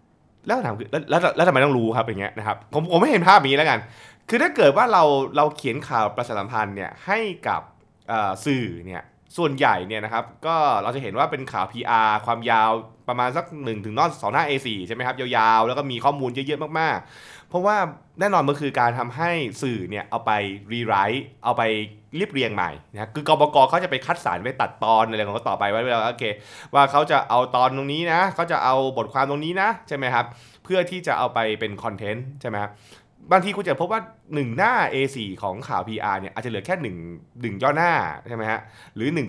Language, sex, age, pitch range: Thai, male, 20-39, 110-150 Hz